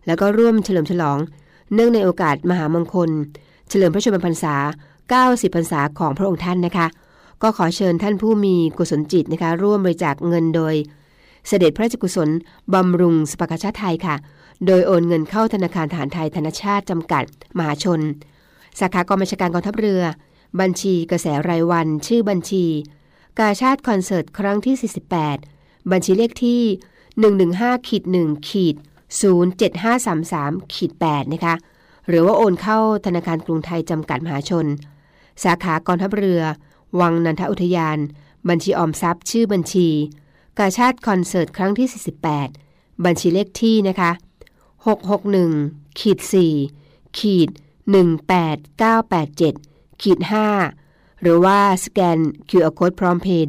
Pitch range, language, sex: 160-195 Hz, Thai, female